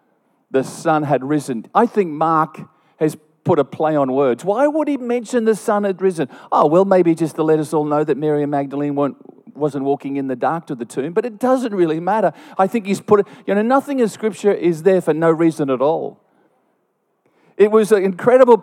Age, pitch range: 50-69, 145-200 Hz